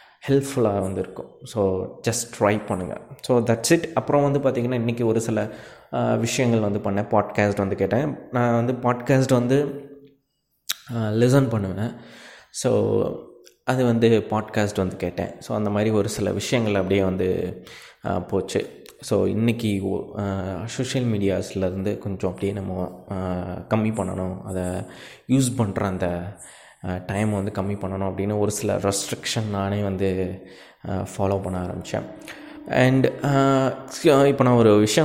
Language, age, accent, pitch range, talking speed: Tamil, 20-39, native, 100-125 Hz, 125 wpm